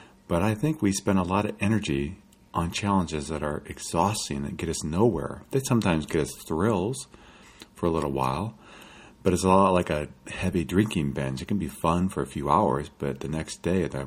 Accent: American